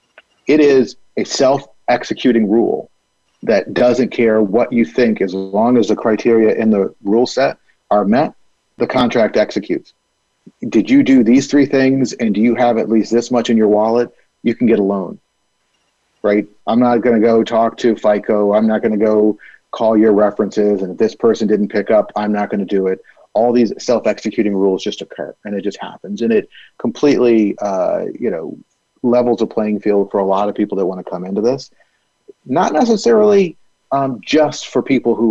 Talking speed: 195 wpm